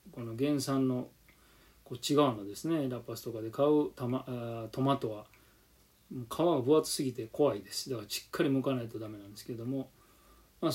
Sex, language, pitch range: male, Japanese, 115-145 Hz